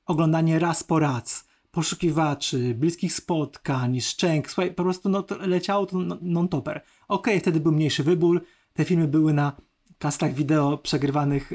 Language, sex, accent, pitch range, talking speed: Polish, male, native, 145-180 Hz, 155 wpm